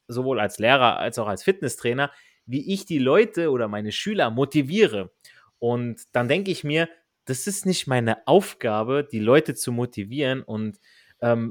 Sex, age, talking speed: male, 30-49, 160 wpm